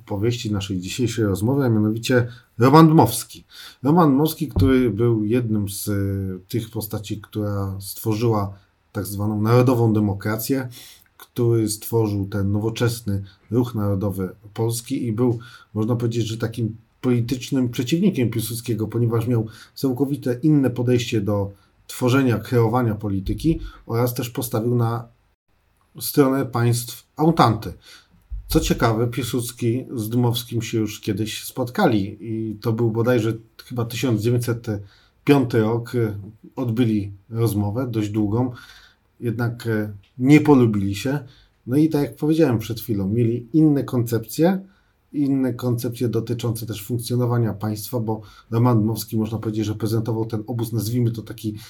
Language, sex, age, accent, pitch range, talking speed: Polish, male, 40-59, native, 105-125 Hz, 125 wpm